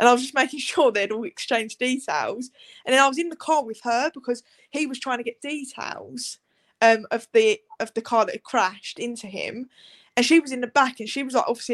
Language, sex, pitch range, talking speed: English, female, 245-410 Hz, 250 wpm